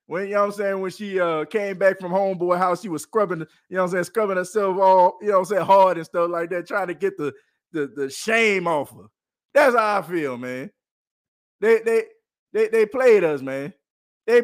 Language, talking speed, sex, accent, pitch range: English, 235 wpm, male, American, 155-215 Hz